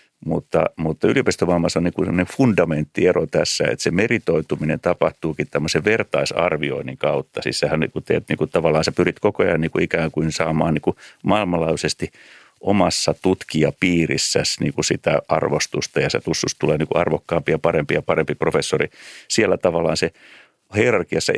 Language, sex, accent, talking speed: Finnish, male, native, 150 wpm